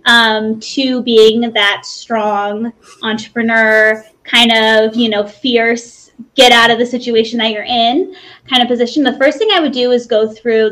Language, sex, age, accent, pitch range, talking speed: English, female, 20-39, American, 220-280 Hz, 175 wpm